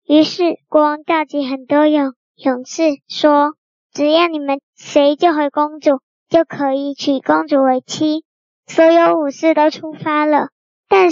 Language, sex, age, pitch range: Chinese, male, 10-29, 285-330 Hz